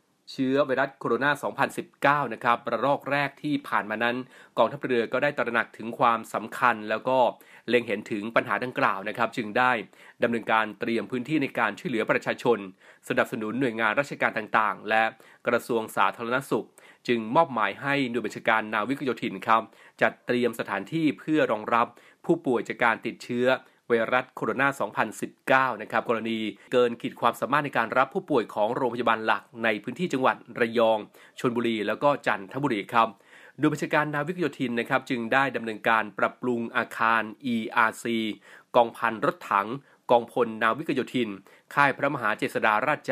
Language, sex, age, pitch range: Thai, male, 20-39, 110-130 Hz